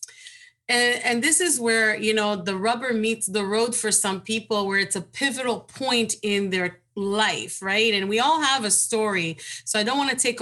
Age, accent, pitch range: 30-49, American, 200-265 Hz